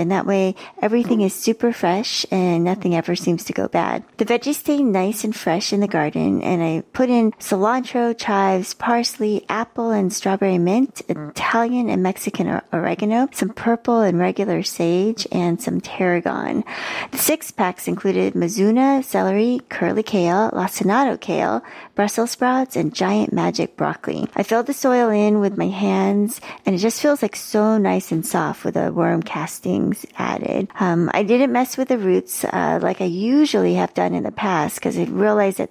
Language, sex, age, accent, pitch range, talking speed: English, female, 40-59, American, 180-230 Hz, 175 wpm